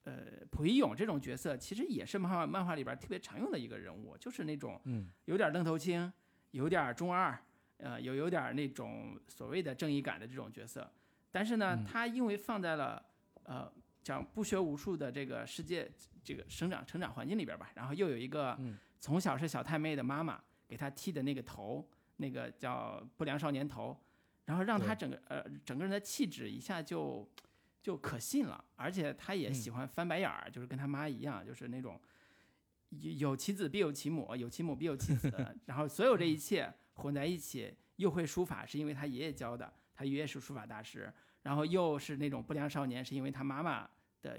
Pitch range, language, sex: 130-170 Hz, Chinese, male